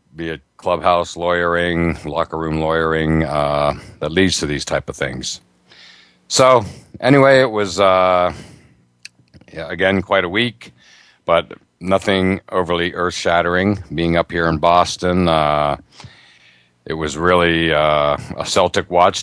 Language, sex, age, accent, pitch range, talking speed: English, male, 60-79, American, 80-95 Hz, 135 wpm